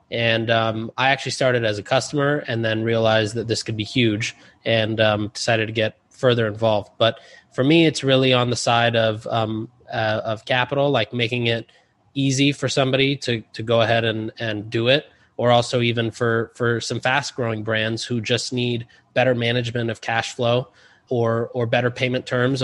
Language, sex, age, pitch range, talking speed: English, male, 20-39, 115-130 Hz, 190 wpm